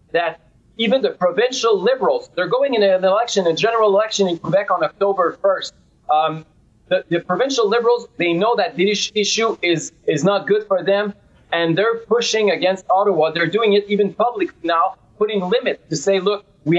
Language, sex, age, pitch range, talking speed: English, male, 30-49, 170-205 Hz, 180 wpm